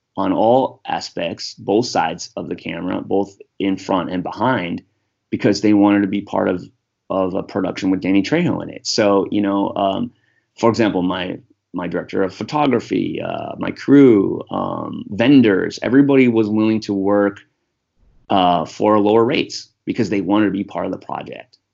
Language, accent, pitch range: English, American, 100-110 Hz